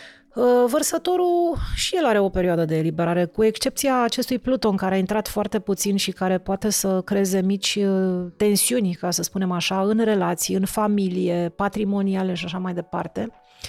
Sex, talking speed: female, 160 wpm